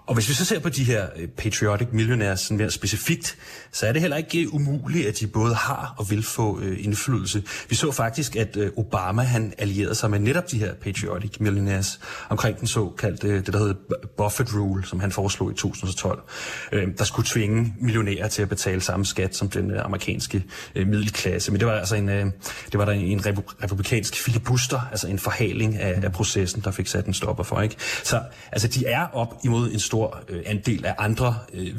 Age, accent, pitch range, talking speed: 30-49, native, 100-115 Hz, 210 wpm